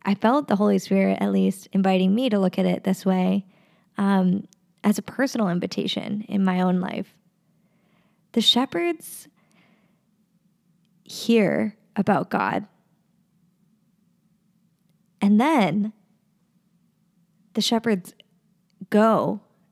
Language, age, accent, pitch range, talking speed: English, 20-39, American, 185-210 Hz, 105 wpm